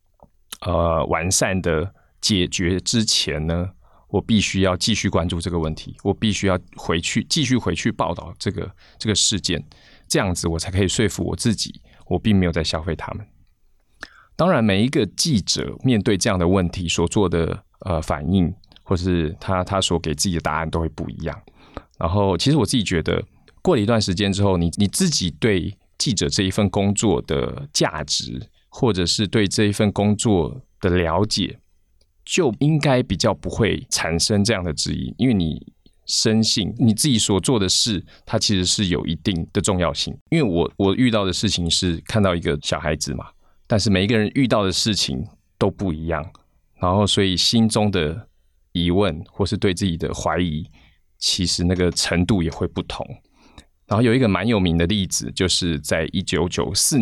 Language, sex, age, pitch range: Chinese, male, 20-39, 85-105 Hz